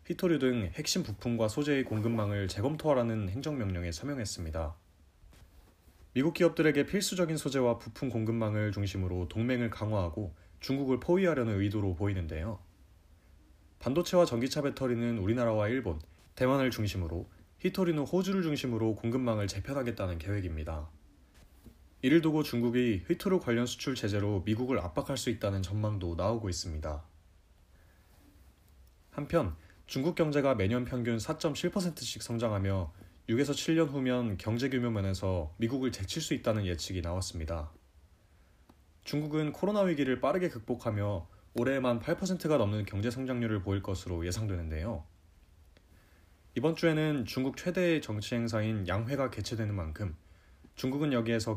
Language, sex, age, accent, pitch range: Korean, male, 30-49, native, 90-130 Hz